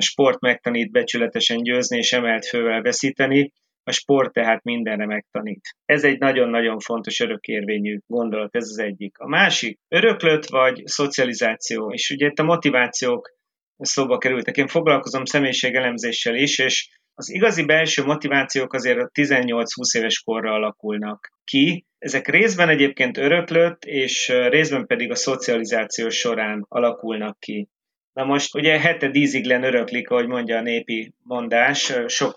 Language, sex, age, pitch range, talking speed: Hungarian, male, 30-49, 120-150 Hz, 140 wpm